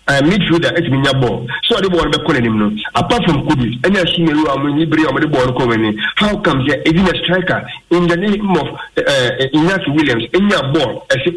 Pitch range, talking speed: 125-170 Hz, 190 wpm